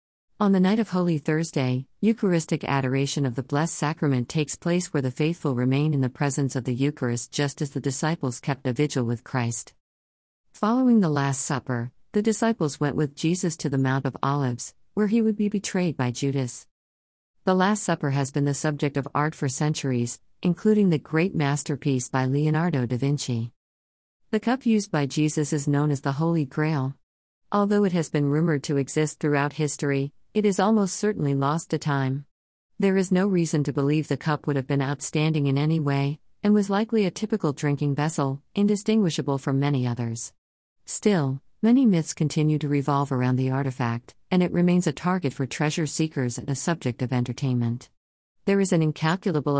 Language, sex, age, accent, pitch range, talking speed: Malayalam, female, 50-69, American, 135-165 Hz, 185 wpm